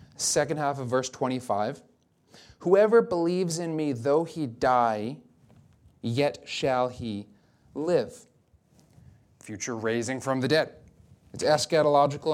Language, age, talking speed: English, 30-49, 110 wpm